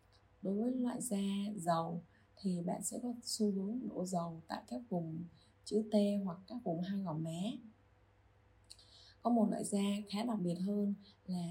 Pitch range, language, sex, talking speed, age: 170-210 Hz, Vietnamese, female, 170 wpm, 20-39